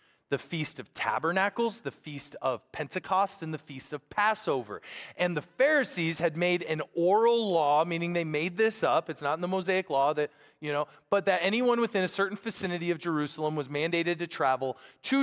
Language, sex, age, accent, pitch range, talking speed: English, male, 30-49, American, 140-195 Hz, 195 wpm